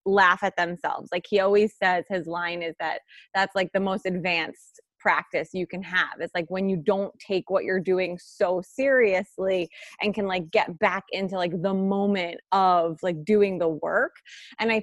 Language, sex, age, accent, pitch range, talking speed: English, female, 20-39, American, 185-225 Hz, 190 wpm